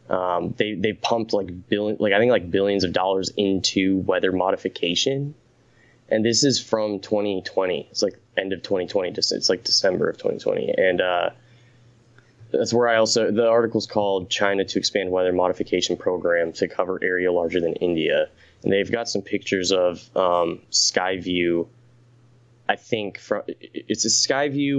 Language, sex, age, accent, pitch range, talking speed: English, male, 20-39, American, 100-120 Hz, 165 wpm